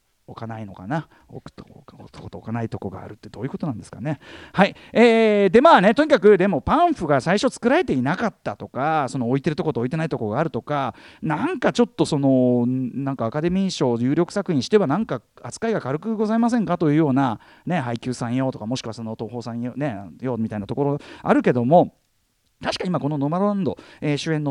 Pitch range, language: 120-200 Hz, Japanese